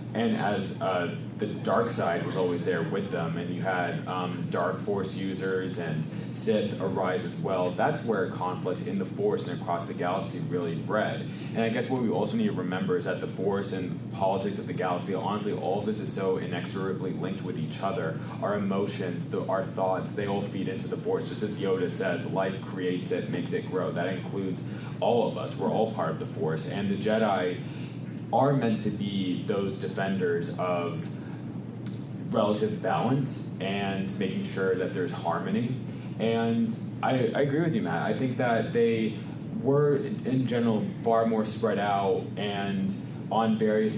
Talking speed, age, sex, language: 185 wpm, 20-39, male, English